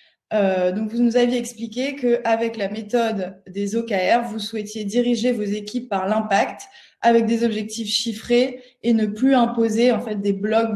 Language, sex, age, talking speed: French, female, 20-39, 175 wpm